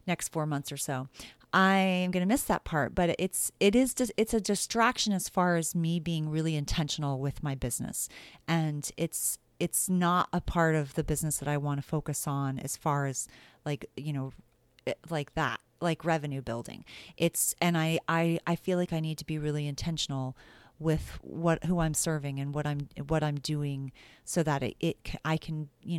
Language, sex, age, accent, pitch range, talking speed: English, female, 30-49, American, 150-170 Hz, 195 wpm